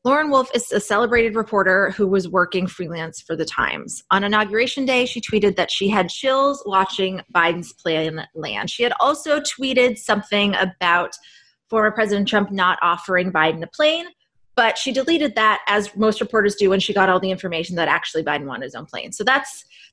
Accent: American